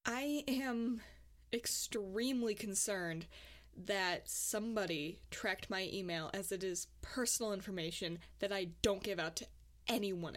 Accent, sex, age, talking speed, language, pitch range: American, female, 20-39, 120 wpm, English, 180-230 Hz